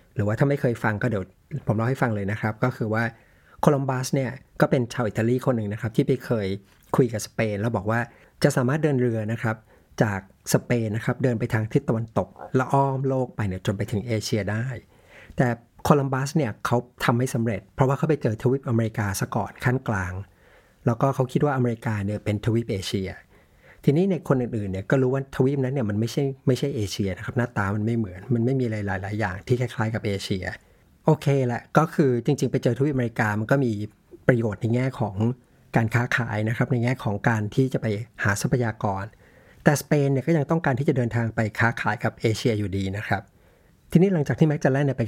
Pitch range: 110-135 Hz